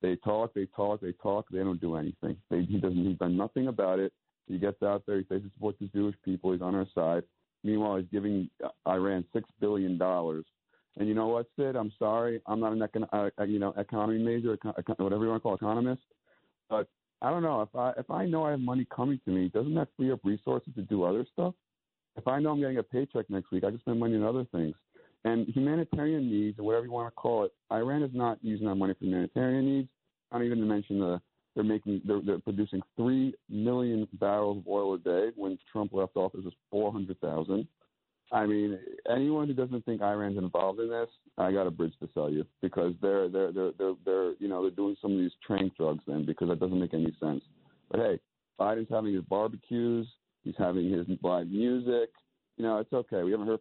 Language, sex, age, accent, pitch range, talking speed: English, male, 40-59, American, 95-115 Hz, 230 wpm